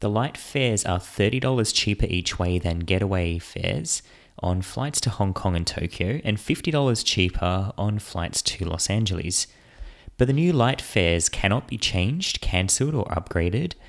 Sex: male